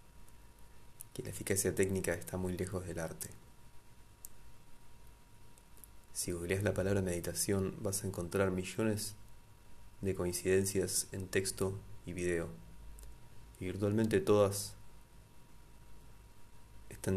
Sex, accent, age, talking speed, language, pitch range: male, Argentinian, 20-39, 100 wpm, Spanish, 90-105 Hz